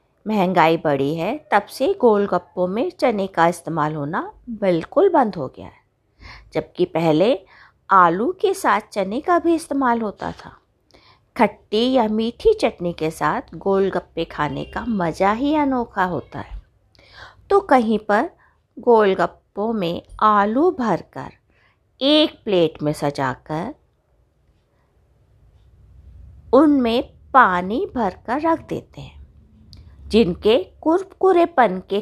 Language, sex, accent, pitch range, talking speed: Hindi, female, native, 170-275 Hz, 115 wpm